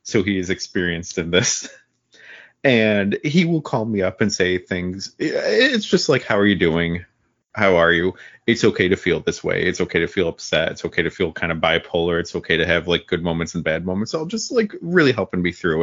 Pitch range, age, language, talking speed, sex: 90-120 Hz, 30-49, English, 230 wpm, male